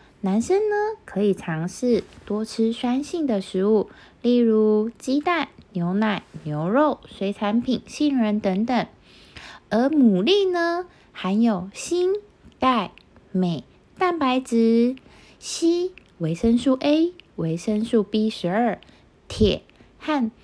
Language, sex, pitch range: Chinese, female, 200-285 Hz